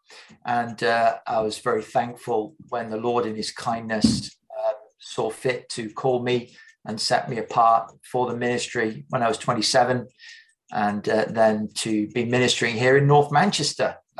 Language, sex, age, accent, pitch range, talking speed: English, male, 40-59, British, 115-145 Hz, 165 wpm